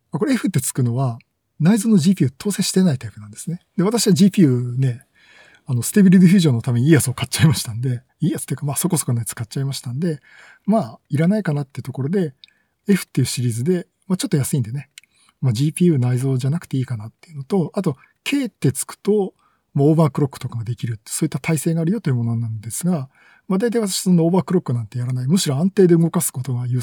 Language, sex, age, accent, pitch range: Japanese, male, 50-69, native, 125-180 Hz